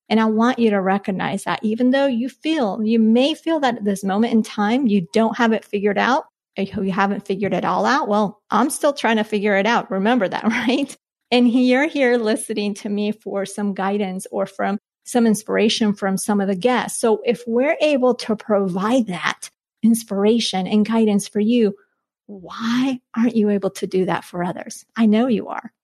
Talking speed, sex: 200 wpm, female